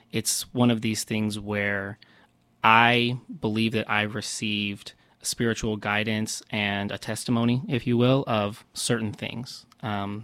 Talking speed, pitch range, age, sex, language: 135 wpm, 105-115 Hz, 20-39, male, English